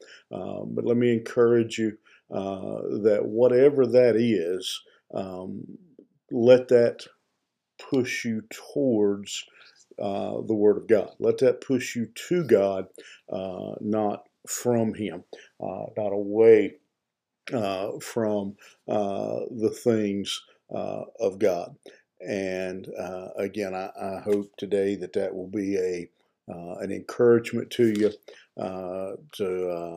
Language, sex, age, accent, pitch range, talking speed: English, male, 50-69, American, 100-120 Hz, 125 wpm